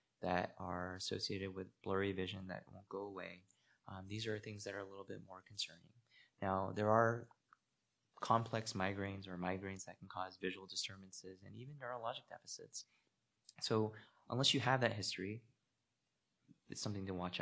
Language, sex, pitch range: English, male, 95-115 Hz